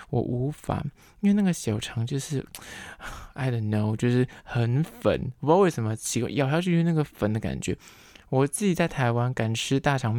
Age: 20-39